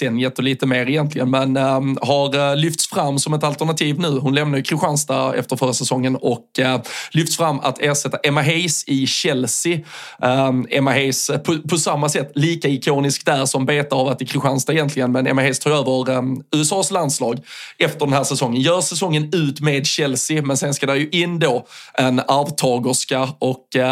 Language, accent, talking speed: Swedish, native, 175 wpm